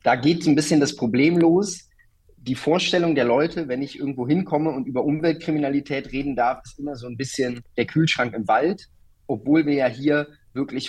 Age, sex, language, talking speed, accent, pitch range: 30-49, male, German, 185 wpm, German, 125-150 Hz